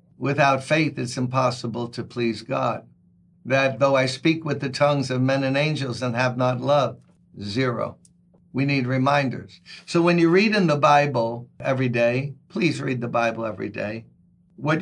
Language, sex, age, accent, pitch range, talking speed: English, male, 60-79, American, 120-155 Hz, 170 wpm